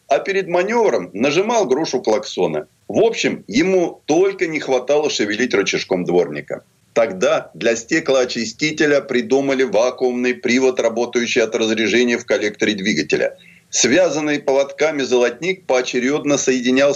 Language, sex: Russian, male